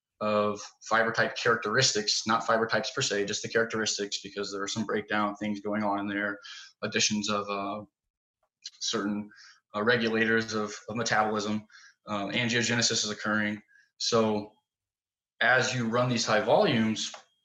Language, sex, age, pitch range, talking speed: English, male, 20-39, 105-120 Hz, 145 wpm